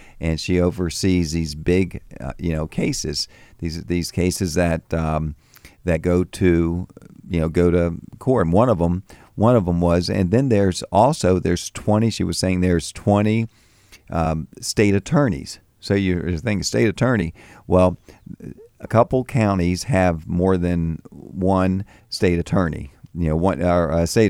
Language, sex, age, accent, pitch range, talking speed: English, male, 50-69, American, 85-105 Hz, 160 wpm